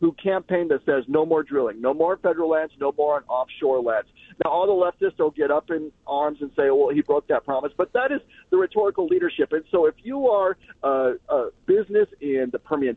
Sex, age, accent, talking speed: male, 40-59, American, 225 wpm